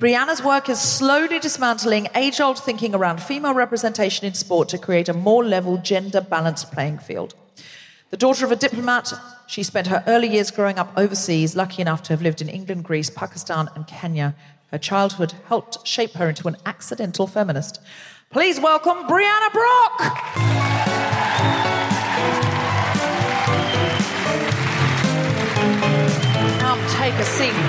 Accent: British